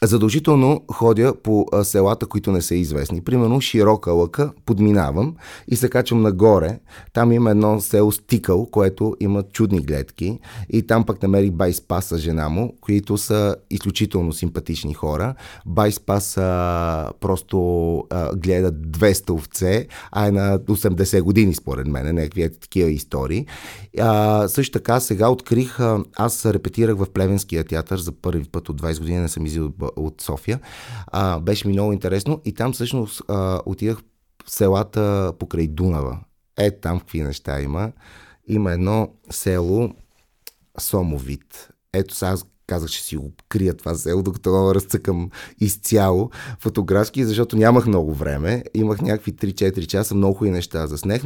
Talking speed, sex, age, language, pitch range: 145 wpm, male, 30-49, Bulgarian, 85-110 Hz